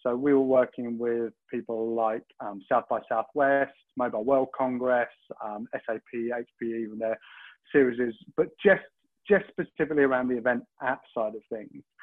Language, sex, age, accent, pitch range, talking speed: English, male, 30-49, British, 125-155 Hz, 160 wpm